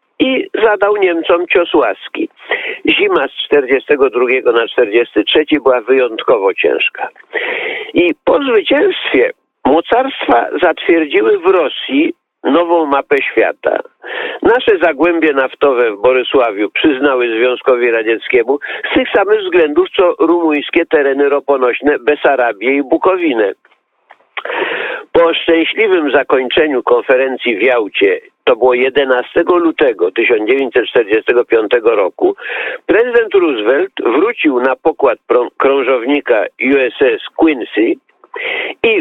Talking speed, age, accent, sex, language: 95 wpm, 50-69, native, male, Polish